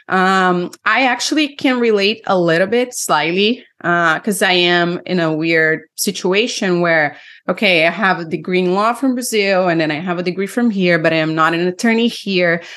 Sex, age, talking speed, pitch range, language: female, 30-49, 195 wpm, 165-200 Hz, English